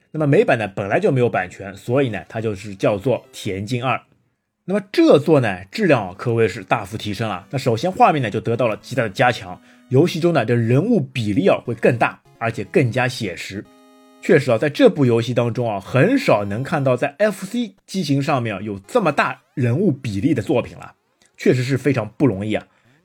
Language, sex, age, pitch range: Chinese, male, 30-49, 110-150 Hz